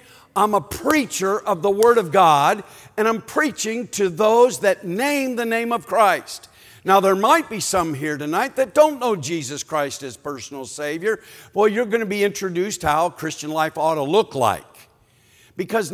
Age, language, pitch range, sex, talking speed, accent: 50-69, English, 145-225 Hz, male, 185 wpm, American